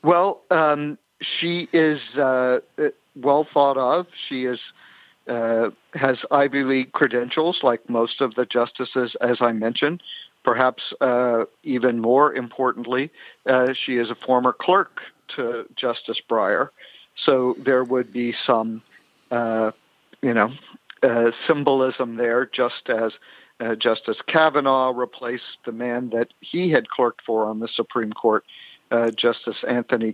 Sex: male